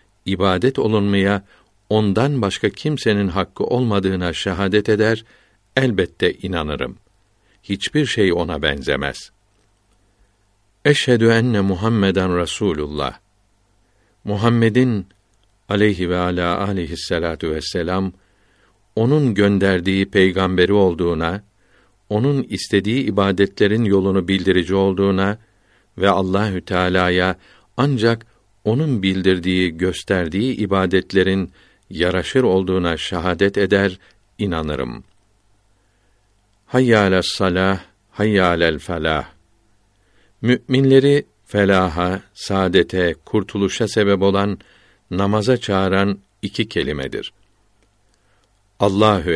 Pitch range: 95-105 Hz